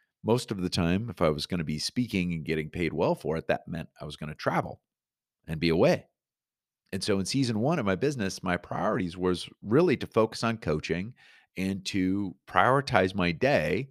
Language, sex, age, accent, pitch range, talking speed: English, male, 40-59, American, 90-125 Hz, 205 wpm